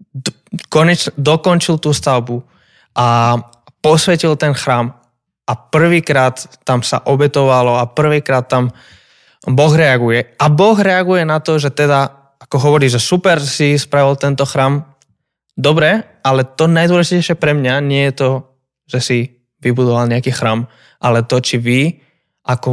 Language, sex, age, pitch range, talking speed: Slovak, male, 20-39, 125-155 Hz, 135 wpm